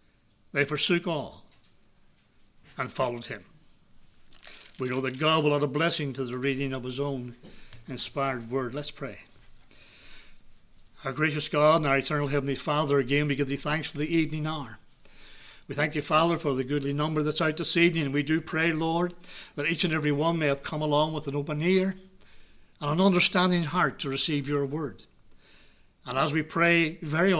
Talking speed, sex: 180 wpm, male